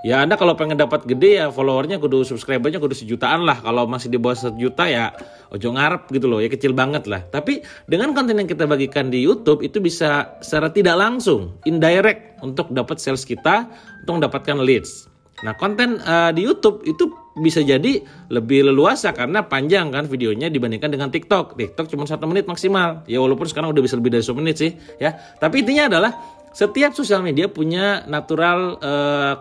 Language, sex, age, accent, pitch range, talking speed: Indonesian, male, 30-49, native, 125-170 Hz, 185 wpm